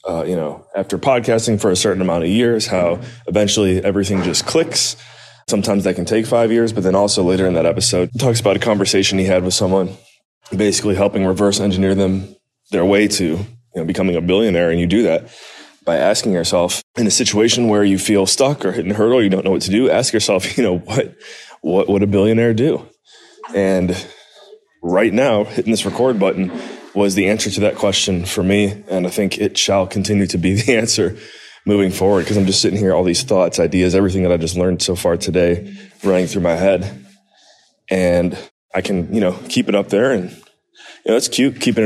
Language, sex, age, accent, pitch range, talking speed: English, male, 20-39, American, 90-105 Hz, 210 wpm